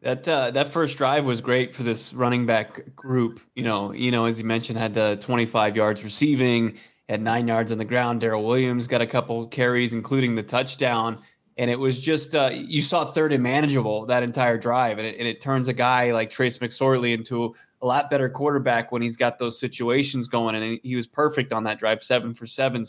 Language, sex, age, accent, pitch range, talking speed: English, male, 20-39, American, 120-140 Hz, 220 wpm